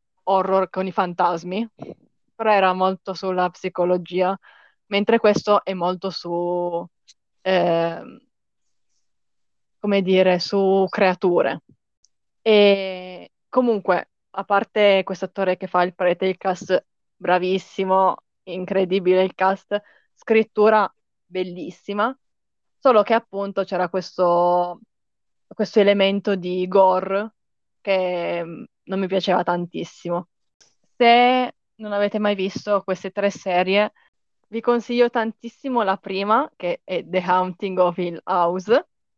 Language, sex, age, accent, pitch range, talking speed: Italian, female, 20-39, native, 185-210 Hz, 110 wpm